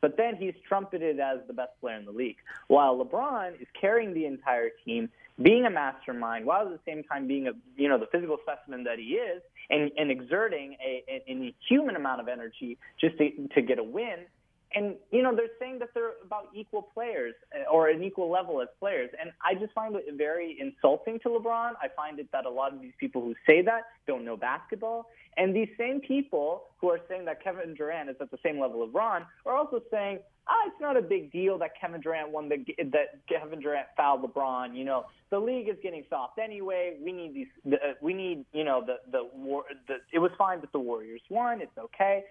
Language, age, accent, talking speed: English, 20-39, American, 225 wpm